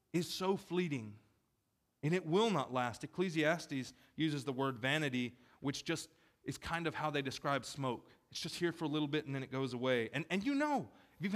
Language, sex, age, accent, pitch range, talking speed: English, male, 30-49, American, 130-185 Hz, 205 wpm